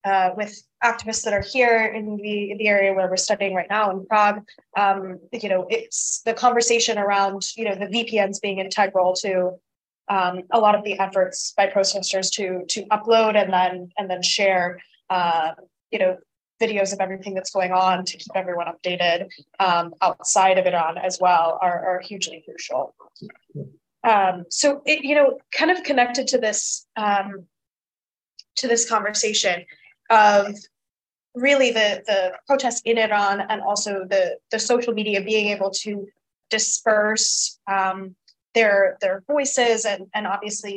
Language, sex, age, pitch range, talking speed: English, female, 20-39, 190-230 Hz, 160 wpm